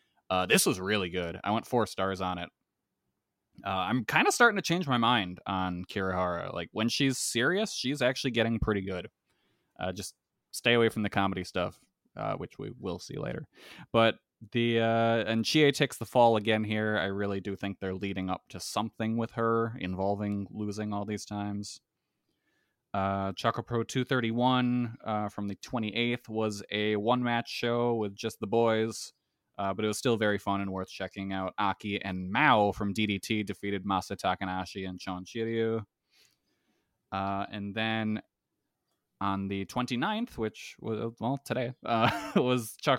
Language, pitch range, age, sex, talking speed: English, 100-115 Hz, 20-39, male, 170 wpm